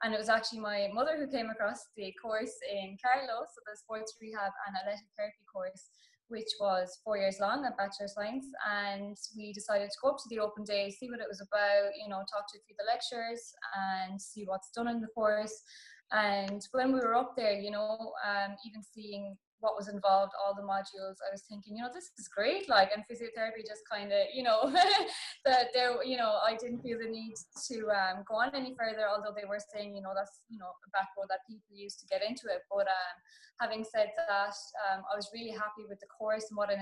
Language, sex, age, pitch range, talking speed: English, female, 20-39, 200-235 Hz, 230 wpm